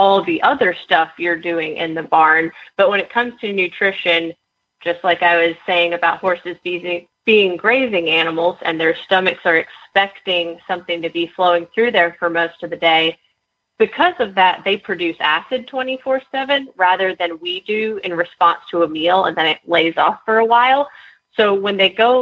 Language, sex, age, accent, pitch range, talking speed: English, female, 30-49, American, 170-205 Hz, 190 wpm